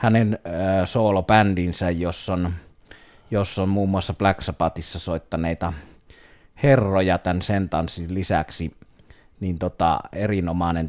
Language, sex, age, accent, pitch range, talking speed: Finnish, male, 30-49, native, 85-100 Hz, 100 wpm